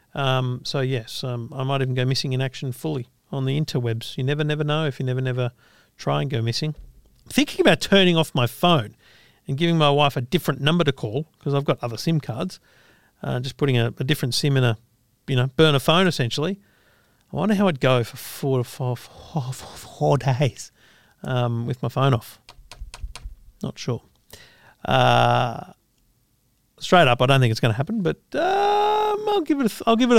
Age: 50-69